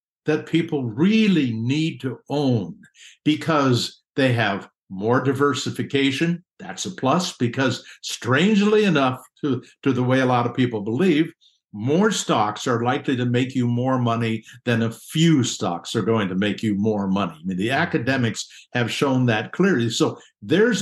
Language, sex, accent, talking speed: English, male, American, 160 wpm